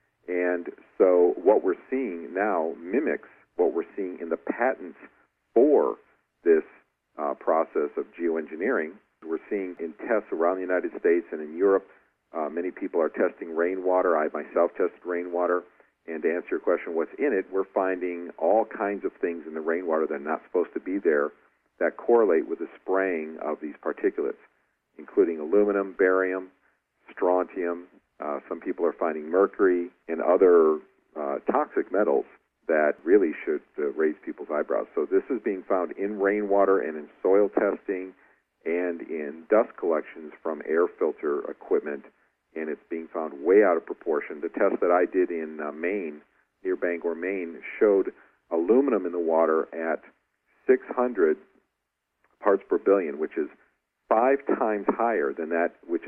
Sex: male